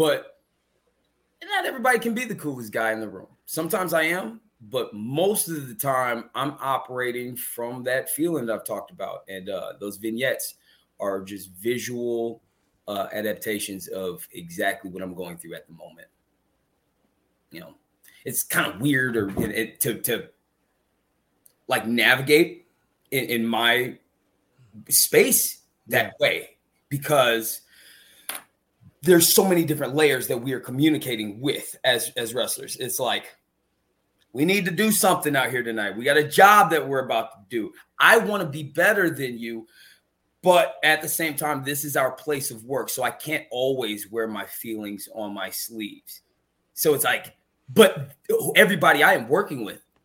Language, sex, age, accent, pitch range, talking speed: English, male, 20-39, American, 110-155 Hz, 160 wpm